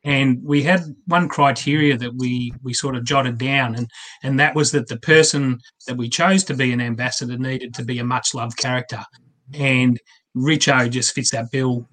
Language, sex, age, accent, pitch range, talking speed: English, male, 30-49, Australian, 125-145 Hz, 190 wpm